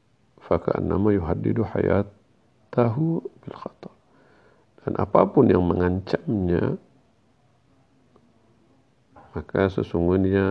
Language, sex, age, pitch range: Indonesian, male, 50-69, 90-120 Hz